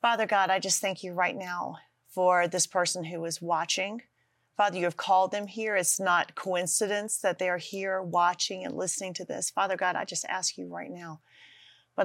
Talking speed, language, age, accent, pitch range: 205 wpm, English, 40-59, American, 175-205 Hz